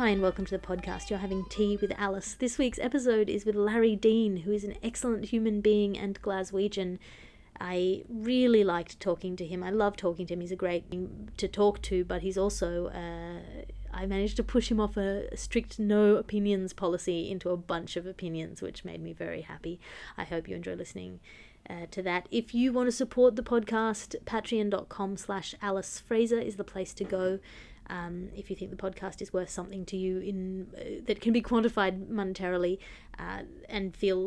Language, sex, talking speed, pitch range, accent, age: English, female, 200 wpm, 180-210 Hz, Australian, 30-49